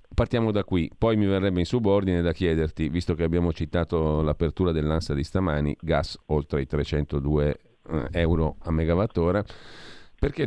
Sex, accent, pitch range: male, native, 75-90 Hz